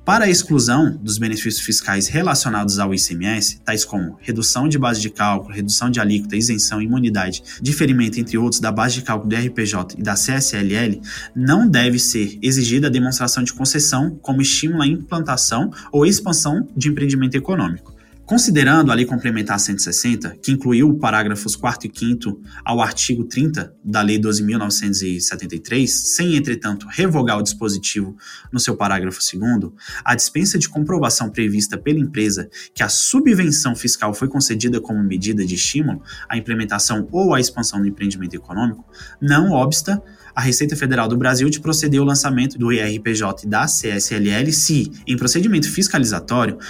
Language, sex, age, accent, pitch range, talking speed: Portuguese, male, 20-39, Brazilian, 105-135 Hz, 155 wpm